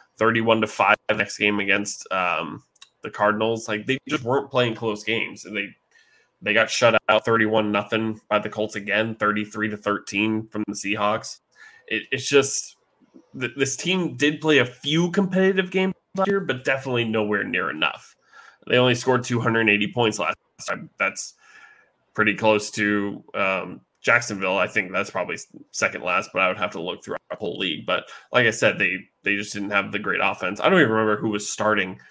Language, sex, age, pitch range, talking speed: English, male, 20-39, 105-125 Hz, 195 wpm